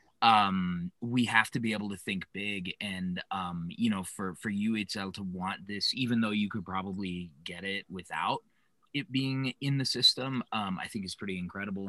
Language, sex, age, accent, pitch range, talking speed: English, male, 30-49, American, 95-135 Hz, 190 wpm